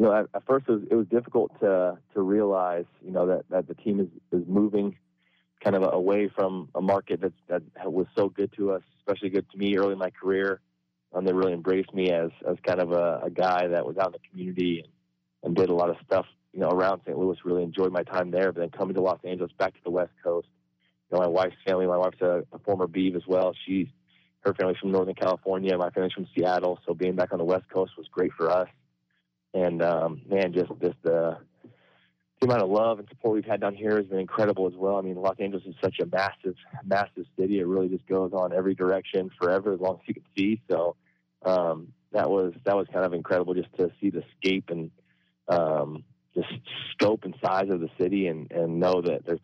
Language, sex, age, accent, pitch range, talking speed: English, male, 20-39, American, 85-95 Hz, 240 wpm